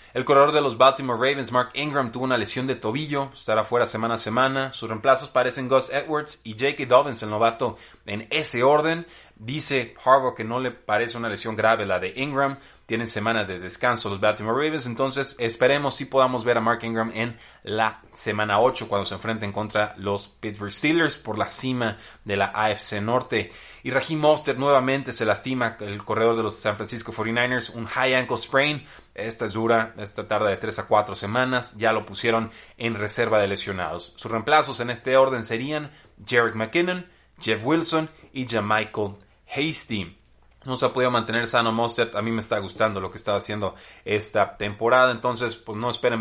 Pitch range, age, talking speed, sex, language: 110-135 Hz, 30-49, 190 wpm, male, Spanish